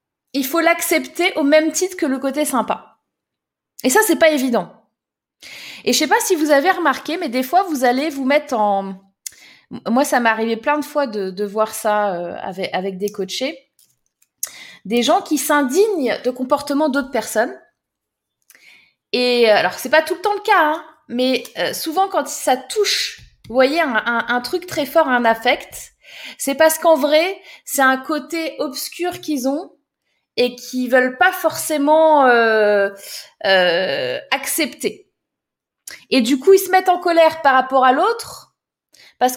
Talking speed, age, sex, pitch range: 170 wpm, 20-39, female, 245-330 Hz